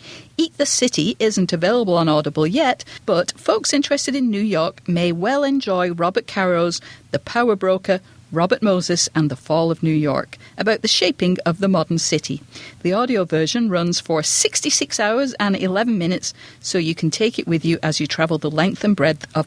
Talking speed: 190 wpm